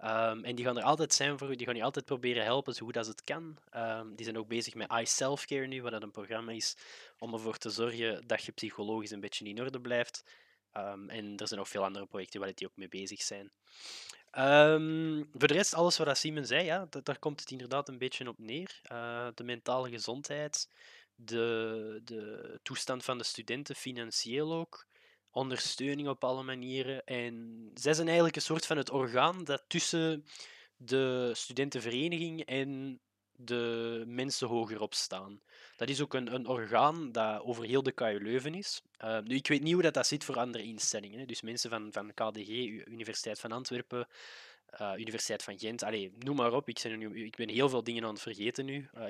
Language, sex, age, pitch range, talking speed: Dutch, male, 20-39, 110-135 Hz, 195 wpm